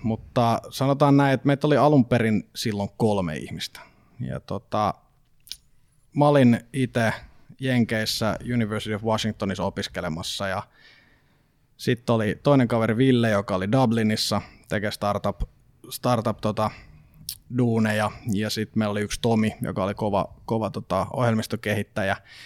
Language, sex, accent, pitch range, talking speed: Finnish, male, native, 100-120 Hz, 105 wpm